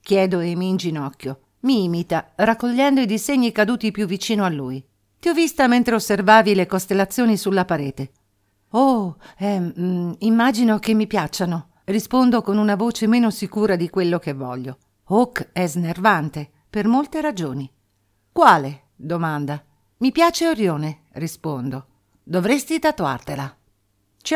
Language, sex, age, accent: Italian, female, 50-69, native